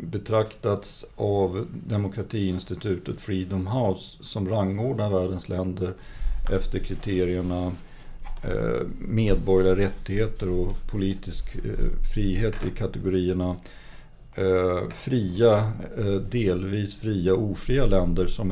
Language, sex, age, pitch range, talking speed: English, male, 50-69, 95-110 Hz, 80 wpm